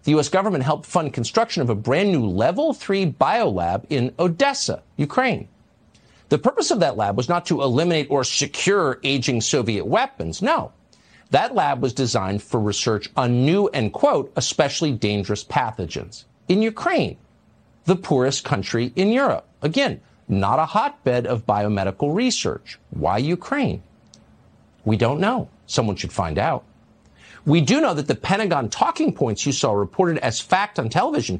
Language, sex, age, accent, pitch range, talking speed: English, male, 50-69, American, 125-195 Hz, 155 wpm